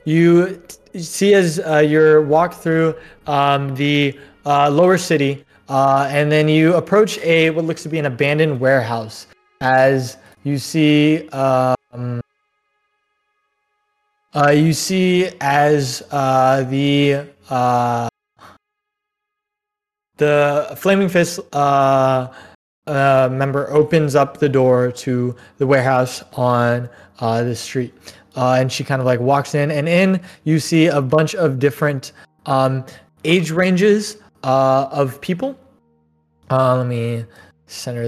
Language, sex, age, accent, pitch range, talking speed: English, male, 20-39, American, 130-170 Hz, 125 wpm